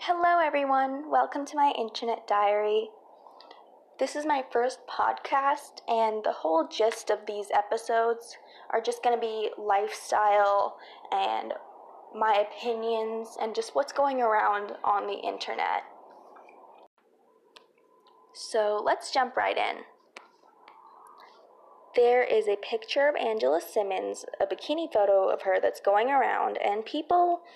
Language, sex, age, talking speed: English, female, 20-39, 125 wpm